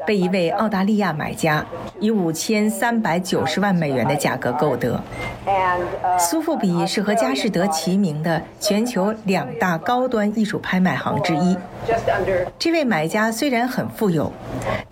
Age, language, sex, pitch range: 50-69, Chinese, female, 175-225 Hz